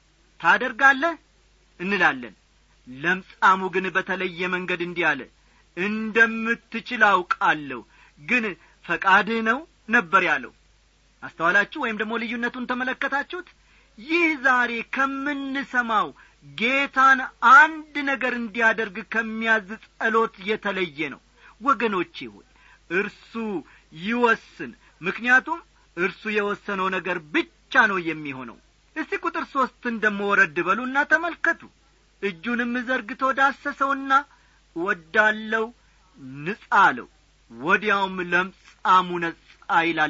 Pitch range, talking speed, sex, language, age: 190-265 Hz, 80 wpm, male, Amharic, 50-69